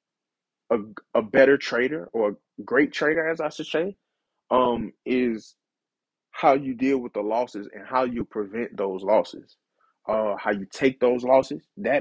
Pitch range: 115-150 Hz